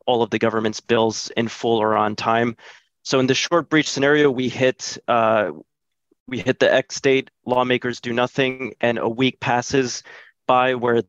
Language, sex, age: English, male, 30-49